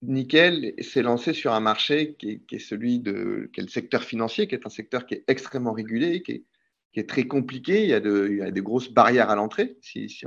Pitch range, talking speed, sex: 110-140 Hz, 240 wpm, male